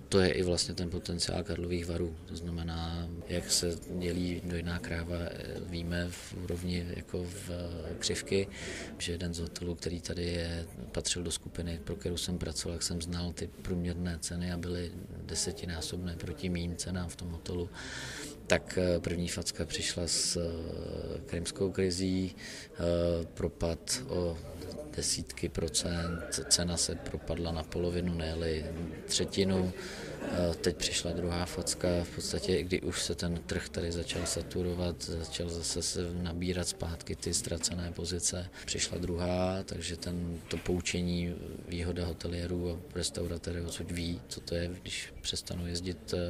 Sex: male